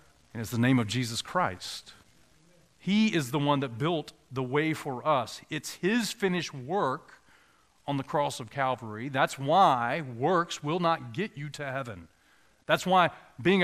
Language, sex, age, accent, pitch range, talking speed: English, male, 40-59, American, 135-190 Hz, 165 wpm